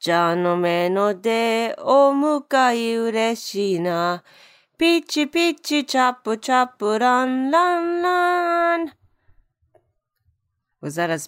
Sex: female